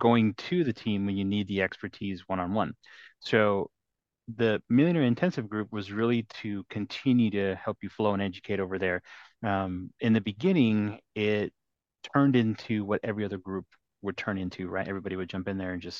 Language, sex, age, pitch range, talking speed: English, male, 30-49, 100-110 Hz, 185 wpm